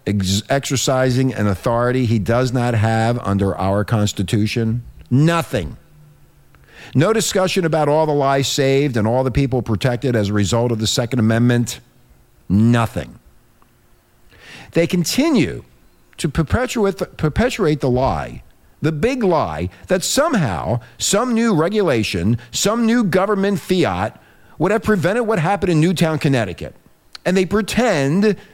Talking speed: 125 wpm